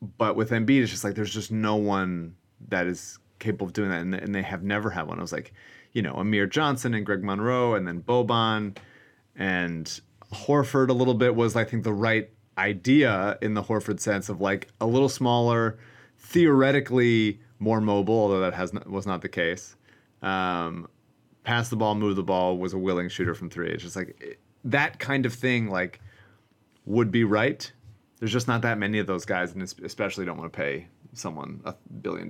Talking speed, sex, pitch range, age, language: 205 wpm, male, 100-120 Hz, 30-49, English